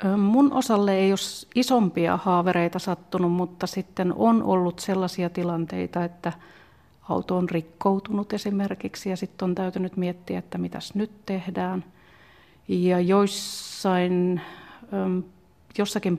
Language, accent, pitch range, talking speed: Finnish, native, 175-190 Hz, 110 wpm